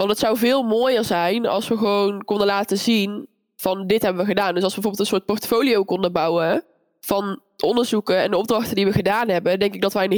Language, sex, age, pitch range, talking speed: Dutch, female, 20-39, 190-220 Hz, 235 wpm